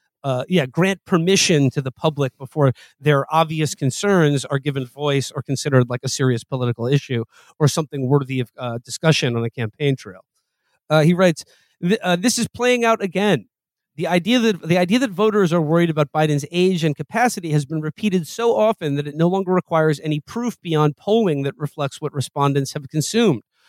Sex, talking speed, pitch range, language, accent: male, 185 wpm, 140-185 Hz, English, American